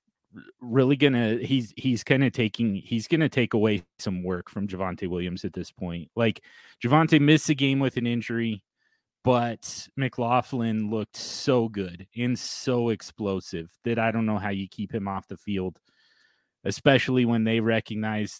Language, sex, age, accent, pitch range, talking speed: English, male, 30-49, American, 105-125 Hz, 165 wpm